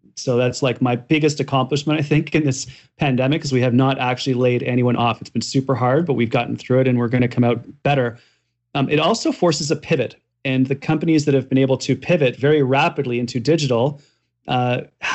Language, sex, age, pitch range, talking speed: English, male, 30-49, 125-140 Hz, 220 wpm